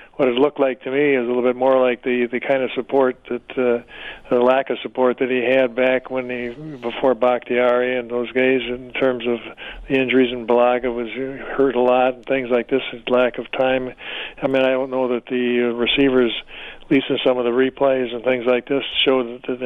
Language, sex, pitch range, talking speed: English, male, 125-135 Hz, 225 wpm